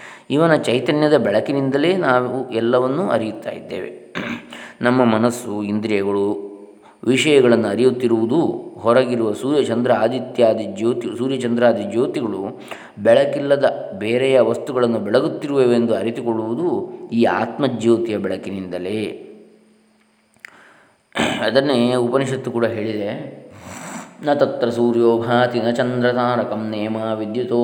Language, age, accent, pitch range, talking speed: Kannada, 20-39, native, 115-125 Hz, 85 wpm